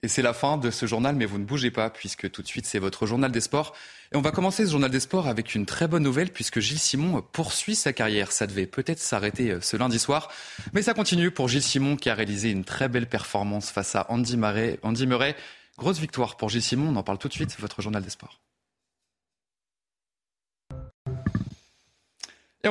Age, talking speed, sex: 20-39, 215 wpm, male